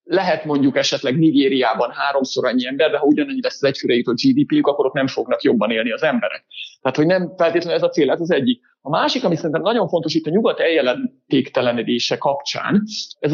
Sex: male